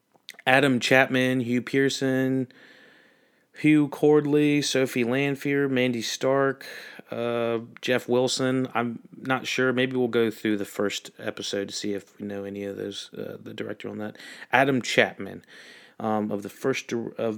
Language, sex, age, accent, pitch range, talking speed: English, male, 30-49, American, 105-130 Hz, 150 wpm